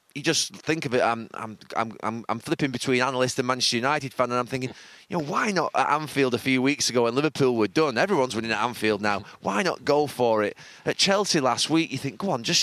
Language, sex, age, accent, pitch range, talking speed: English, male, 20-39, British, 125-155 Hz, 245 wpm